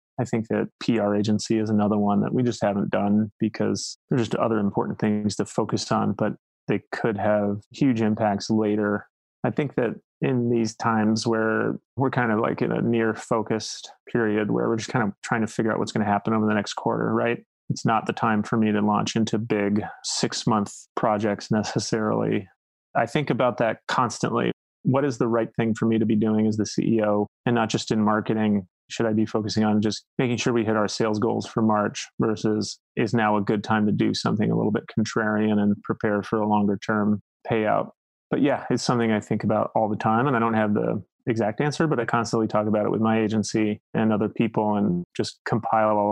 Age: 30-49